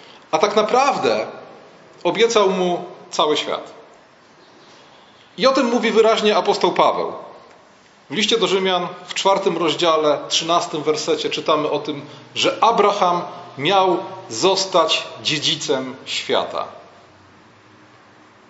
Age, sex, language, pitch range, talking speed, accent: 40-59, male, Polish, 155-205 Hz, 105 wpm, native